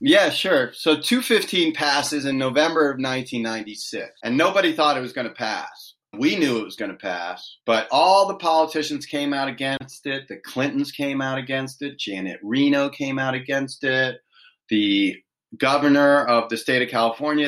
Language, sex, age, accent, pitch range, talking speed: English, male, 30-49, American, 130-160 Hz, 175 wpm